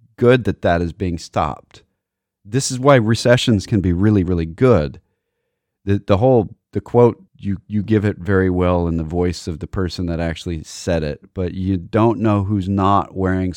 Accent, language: American, English